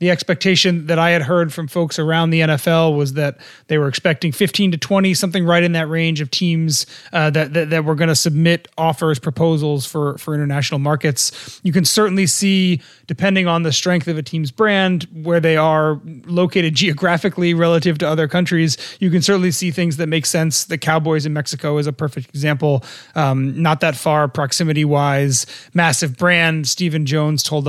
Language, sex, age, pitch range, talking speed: English, male, 30-49, 155-180 Hz, 190 wpm